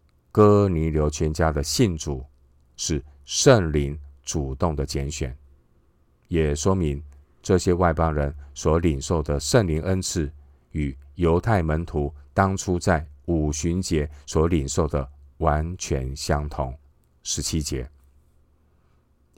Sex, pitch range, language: male, 70-80 Hz, Chinese